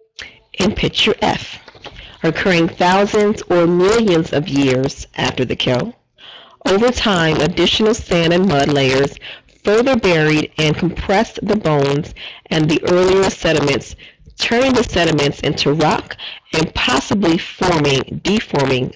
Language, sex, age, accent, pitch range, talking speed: English, female, 40-59, American, 150-210 Hz, 120 wpm